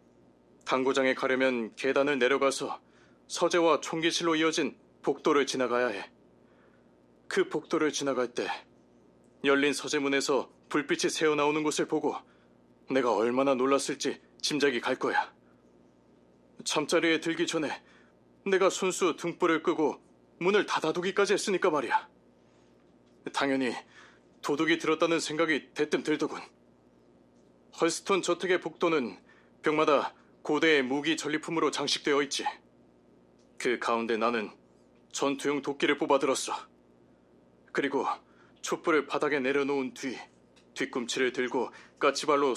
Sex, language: male, Korean